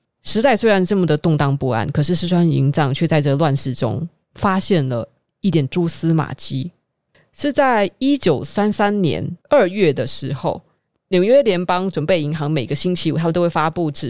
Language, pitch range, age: Chinese, 150-195 Hz, 20-39